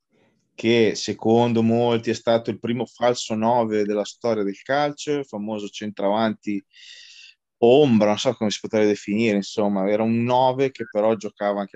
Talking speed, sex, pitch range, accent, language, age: 160 wpm, male, 105-135 Hz, native, Italian, 20-39